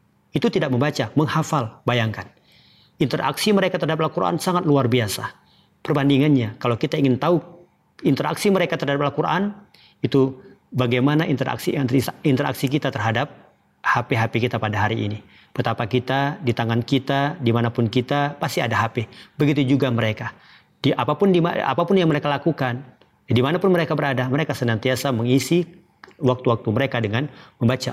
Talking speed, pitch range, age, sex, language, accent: 135 wpm, 110-140 Hz, 40-59, male, Indonesian, native